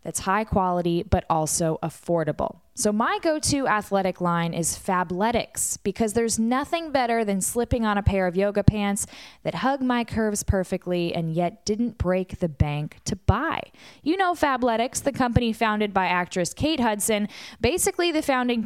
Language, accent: English, American